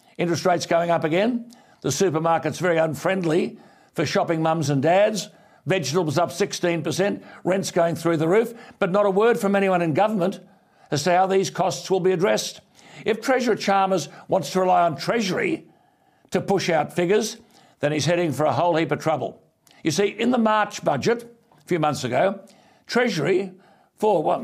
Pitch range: 170-200 Hz